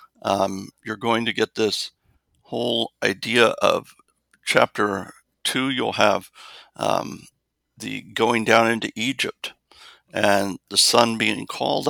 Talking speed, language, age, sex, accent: 120 wpm, English, 60-79, male, American